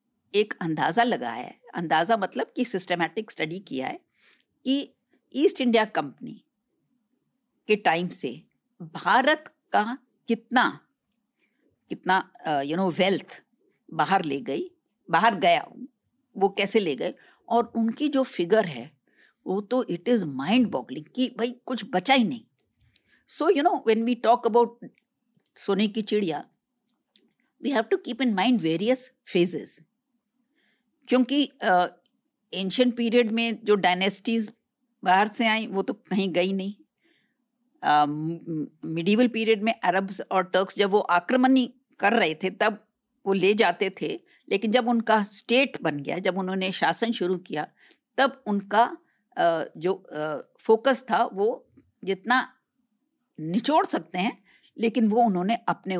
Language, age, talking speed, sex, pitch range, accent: Hindi, 50-69, 140 wpm, female, 180-250 Hz, native